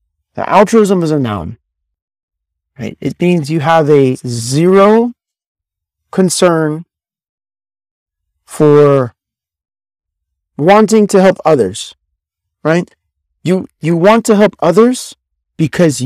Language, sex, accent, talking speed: English, male, American, 95 wpm